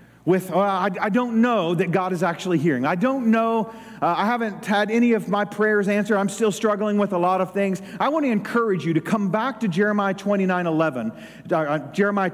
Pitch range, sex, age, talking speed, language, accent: 170-230 Hz, male, 40-59, 220 wpm, English, American